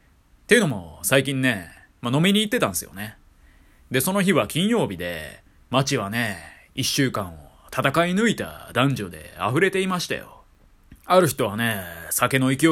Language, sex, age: Japanese, male, 20-39